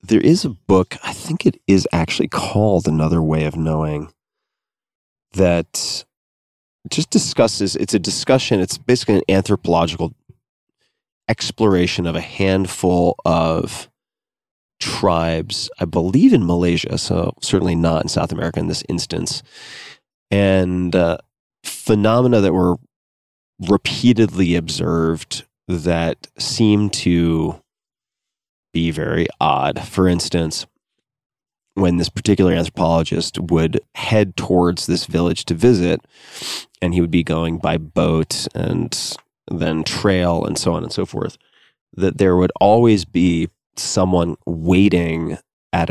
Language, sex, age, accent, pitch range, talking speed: English, male, 30-49, American, 85-100 Hz, 120 wpm